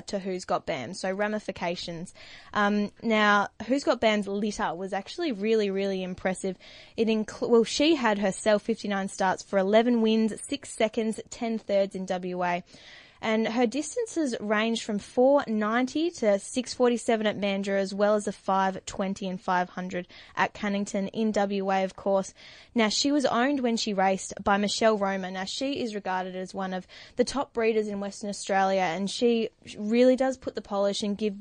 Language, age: English, 10-29